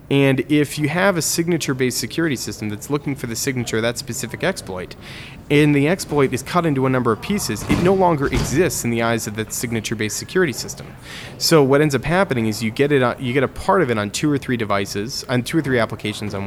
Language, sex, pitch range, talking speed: English, male, 105-140 Hz, 230 wpm